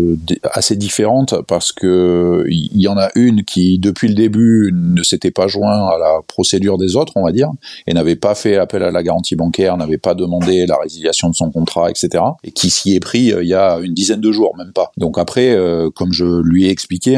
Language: French